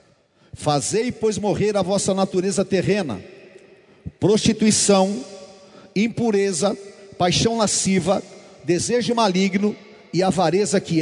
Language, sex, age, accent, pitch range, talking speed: Portuguese, male, 50-69, Brazilian, 185-245 Hz, 85 wpm